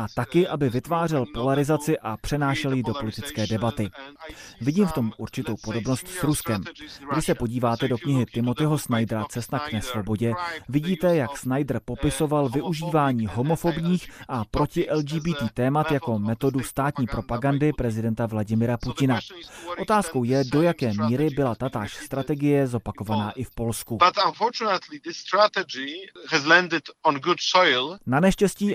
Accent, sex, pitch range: native, male, 120-150 Hz